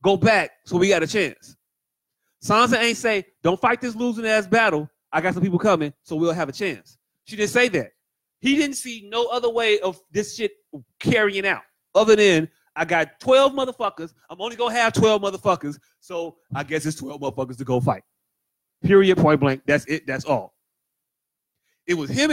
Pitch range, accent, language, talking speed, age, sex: 160-235 Hz, American, English, 190 wpm, 30-49, male